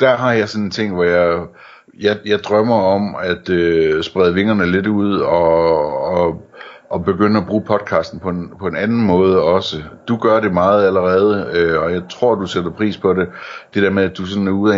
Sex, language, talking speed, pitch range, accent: male, Danish, 225 wpm, 85-100 Hz, native